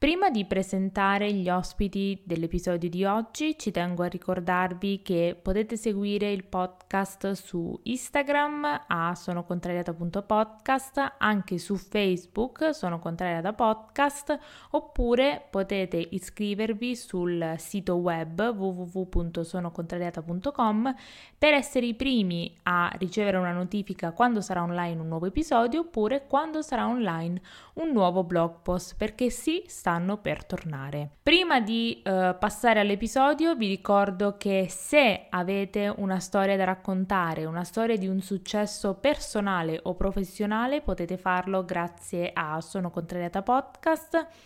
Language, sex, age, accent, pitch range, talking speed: Italian, female, 20-39, native, 180-225 Hz, 120 wpm